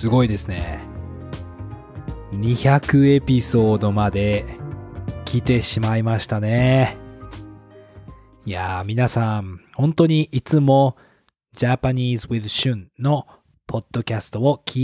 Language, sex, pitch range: Japanese, male, 110-145 Hz